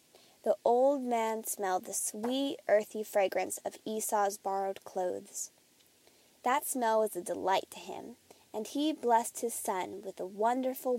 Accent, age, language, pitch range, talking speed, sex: American, 20-39, English, 200-270 Hz, 145 wpm, female